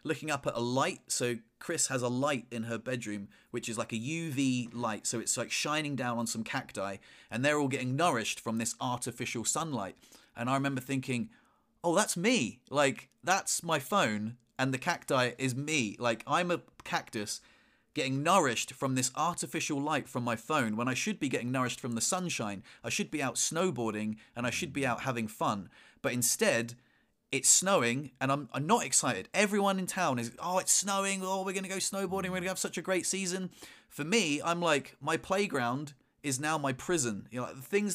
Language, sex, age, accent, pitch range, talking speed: English, male, 30-49, British, 120-170 Hz, 205 wpm